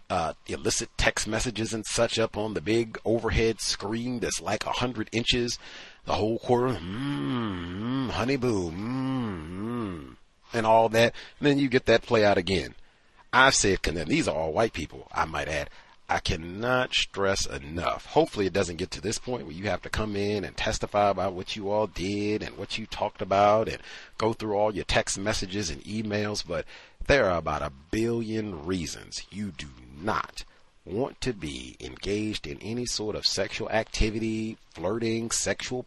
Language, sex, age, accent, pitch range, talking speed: English, male, 40-59, American, 95-115 Hz, 180 wpm